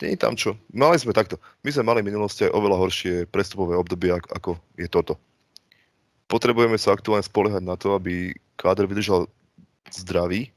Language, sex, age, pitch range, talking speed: Slovak, male, 20-39, 90-105 Hz, 165 wpm